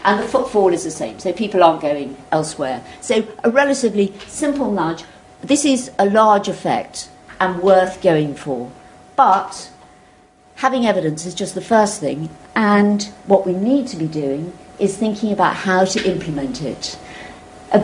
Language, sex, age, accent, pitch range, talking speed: English, female, 50-69, British, 175-220 Hz, 160 wpm